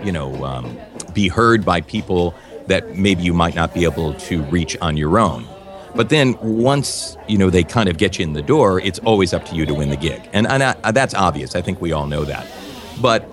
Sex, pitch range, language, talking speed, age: male, 85-110 Hz, English, 240 wpm, 40-59